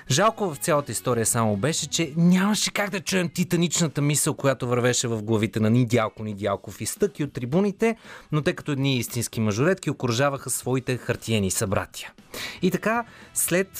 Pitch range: 115-175 Hz